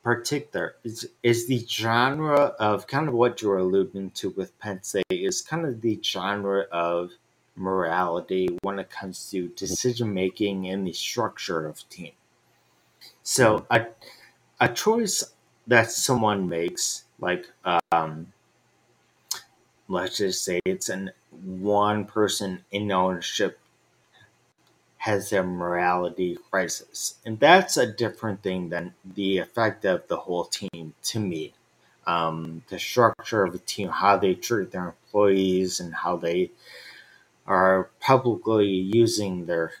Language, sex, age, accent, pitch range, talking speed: English, male, 30-49, American, 90-120 Hz, 130 wpm